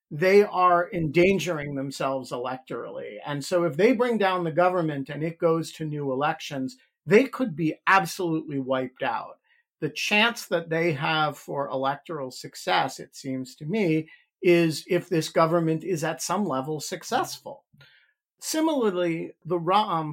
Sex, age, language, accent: male, 50-69, English, American